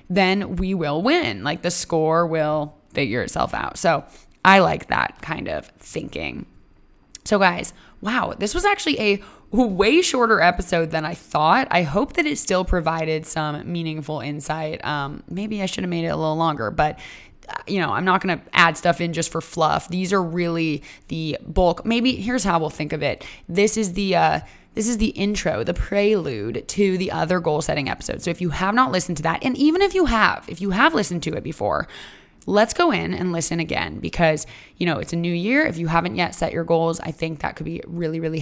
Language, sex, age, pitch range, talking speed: English, female, 20-39, 165-210 Hz, 215 wpm